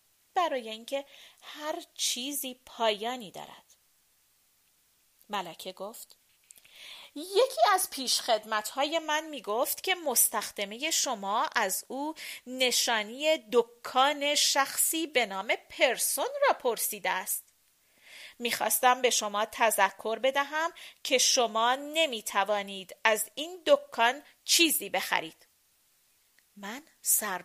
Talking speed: 100 wpm